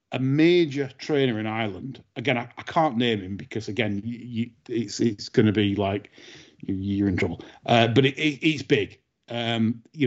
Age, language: 40-59, English